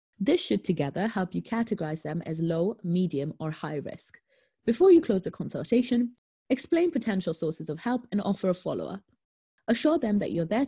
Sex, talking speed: female, 180 wpm